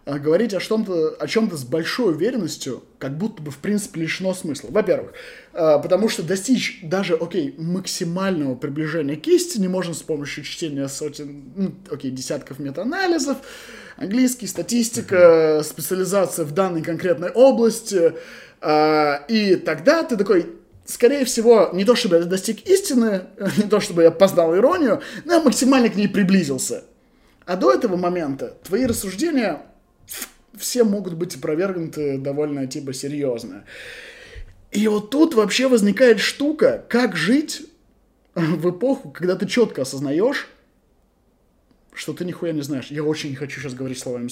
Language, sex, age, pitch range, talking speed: Russian, male, 20-39, 155-225 Hz, 140 wpm